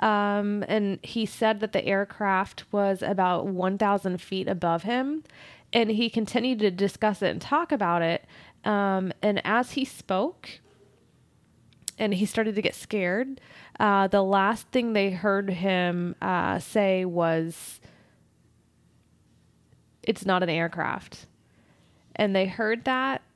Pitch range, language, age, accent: 185-220 Hz, English, 20-39, American